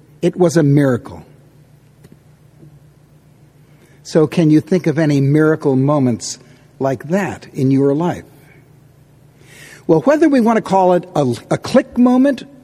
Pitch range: 140-175 Hz